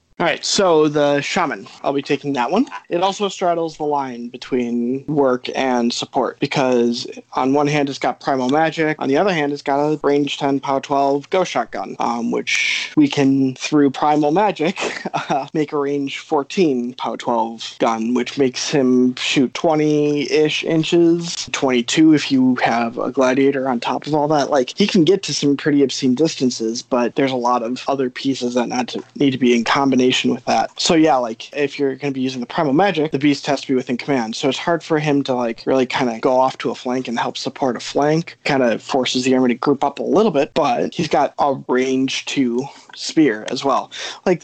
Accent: American